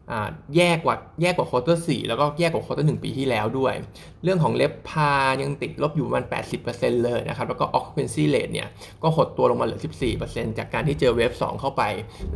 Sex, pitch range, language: male, 120-150 Hz, Thai